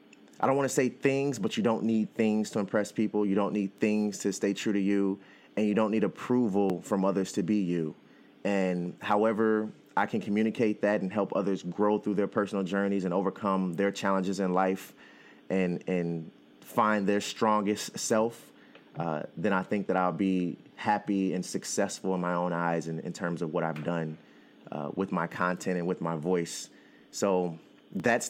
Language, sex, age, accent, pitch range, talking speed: English, male, 30-49, American, 90-105 Hz, 190 wpm